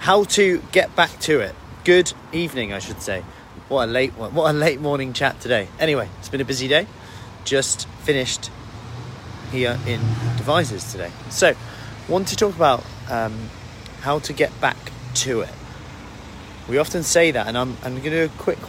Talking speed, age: 175 wpm, 30-49